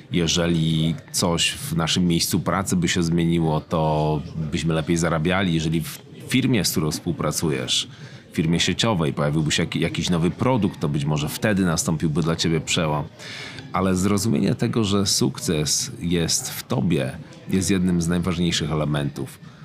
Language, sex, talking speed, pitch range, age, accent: Polish, male, 145 wpm, 80-95 Hz, 30-49, native